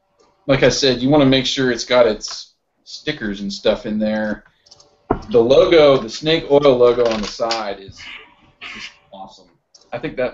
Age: 40-59